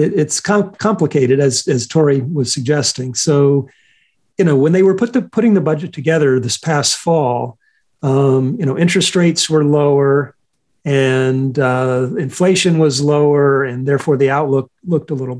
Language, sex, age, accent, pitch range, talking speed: English, male, 40-59, American, 135-170 Hz, 160 wpm